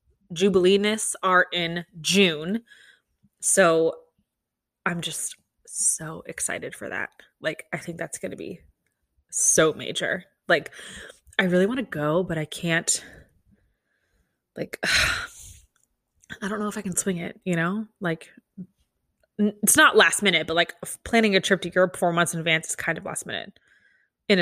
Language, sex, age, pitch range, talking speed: English, female, 20-39, 175-225 Hz, 150 wpm